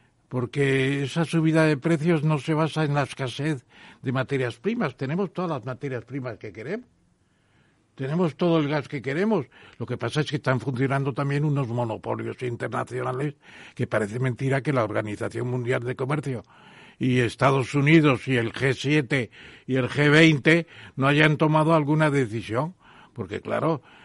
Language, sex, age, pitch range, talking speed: Spanish, male, 60-79, 125-155 Hz, 155 wpm